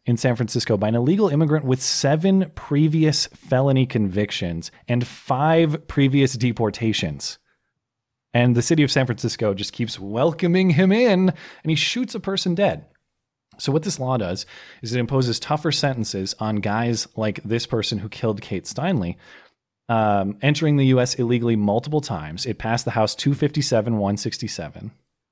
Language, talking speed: English, 150 wpm